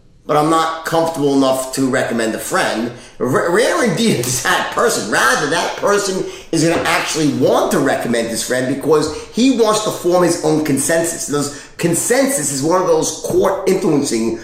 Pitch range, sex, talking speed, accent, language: 140-190 Hz, male, 180 wpm, American, English